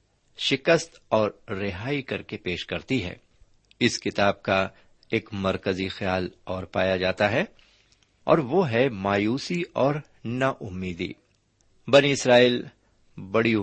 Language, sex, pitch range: Urdu, male, 95-135 Hz